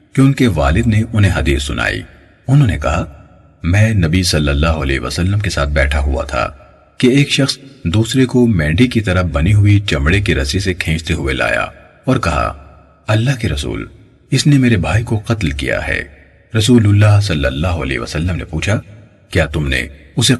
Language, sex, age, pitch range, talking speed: Urdu, male, 40-59, 80-115 Hz, 185 wpm